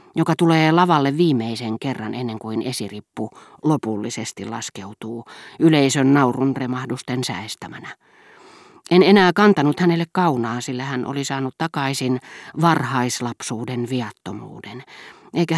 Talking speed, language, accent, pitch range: 105 wpm, Finnish, native, 125-165 Hz